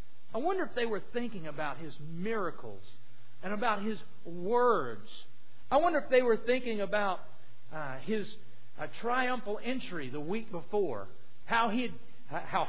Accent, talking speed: American, 135 wpm